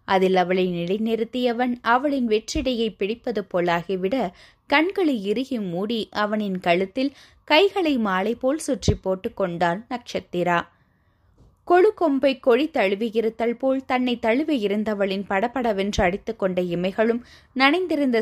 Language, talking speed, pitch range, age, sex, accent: Tamil, 100 wpm, 190-265 Hz, 20-39, female, native